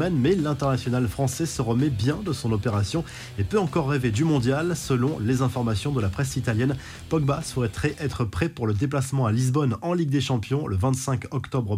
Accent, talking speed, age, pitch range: French, 195 wpm, 20-39, 115-140 Hz